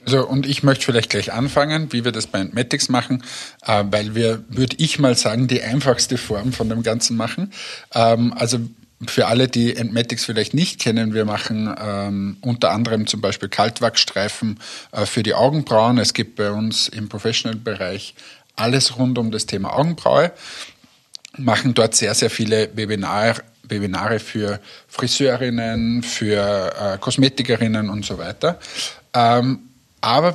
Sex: male